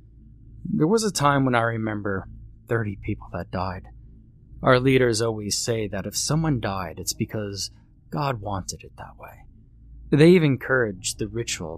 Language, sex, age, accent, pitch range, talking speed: English, male, 30-49, American, 100-125 Hz, 160 wpm